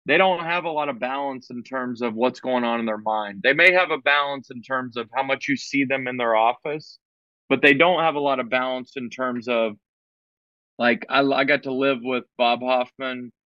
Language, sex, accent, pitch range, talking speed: English, male, American, 120-140 Hz, 230 wpm